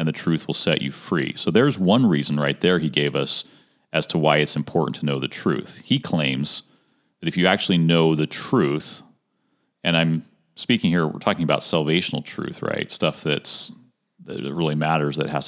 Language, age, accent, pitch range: English, 40-59, American, 75-90 Hz